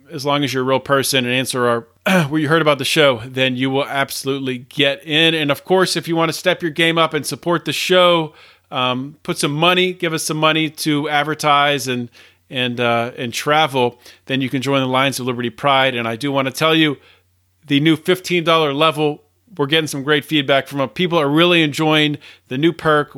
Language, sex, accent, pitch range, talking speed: English, male, American, 130-150 Hz, 225 wpm